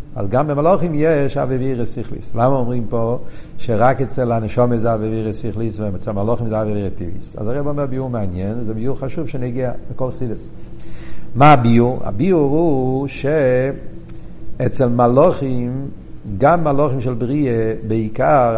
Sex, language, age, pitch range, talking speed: male, Hebrew, 60-79, 115-150 Hz, 145 wpm